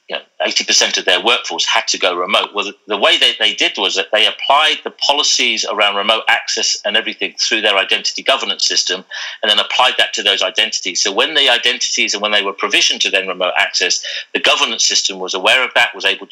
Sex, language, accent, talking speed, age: male, English, British, 230 wpm, 50-69